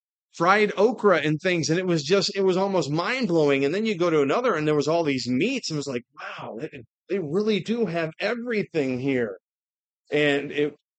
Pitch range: 130-165 Hz